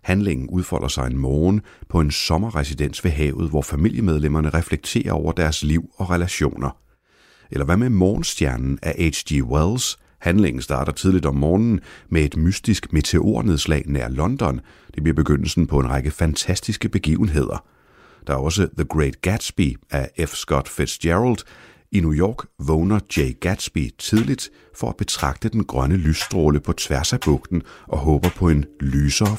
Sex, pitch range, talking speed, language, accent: male, 70-90 Hz, 155 wpm, Danish, native